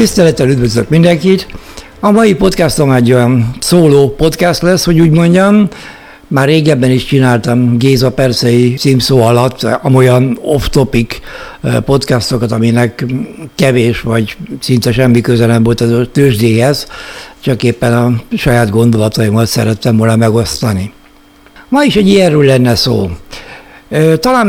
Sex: male